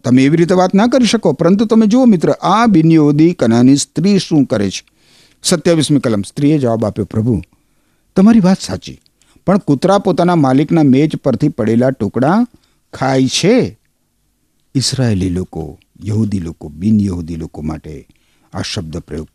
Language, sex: Gujarati, male